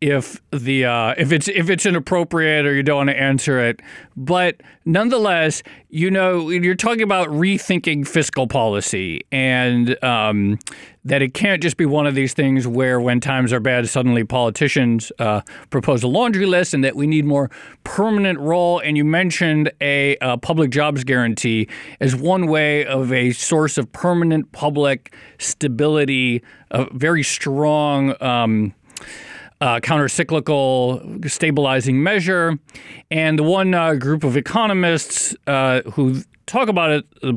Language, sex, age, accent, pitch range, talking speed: English, male, 40-59, American, 130-170 Hz, 150 wpm